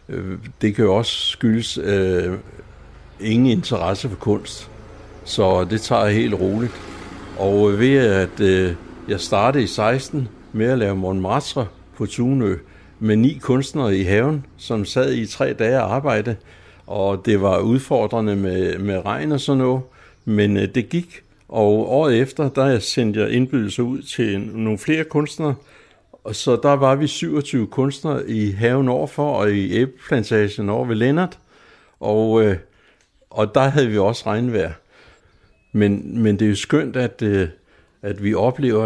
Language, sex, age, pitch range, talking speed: Danish, male, 60-79, 100-130 Hz, 155 wpm